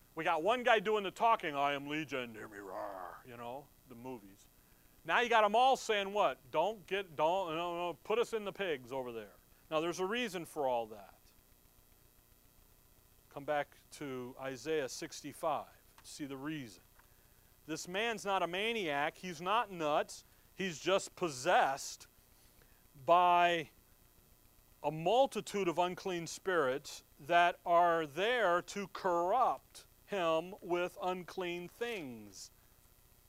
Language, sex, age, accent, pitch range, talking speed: English, male, 40-59, American, 125-185 Hz, 135 wpm